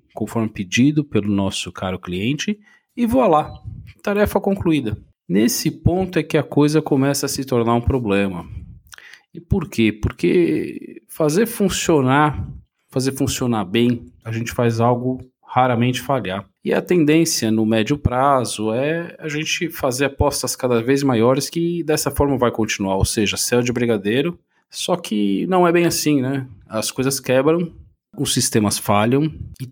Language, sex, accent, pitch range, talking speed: Portuguese, male, Brazilian, 110-150 Hz, 150 wpm